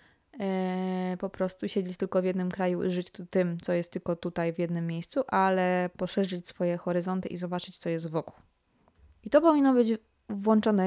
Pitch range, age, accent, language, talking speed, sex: 180-225 Hz, 20-39, native, Polish, 170 wpm, female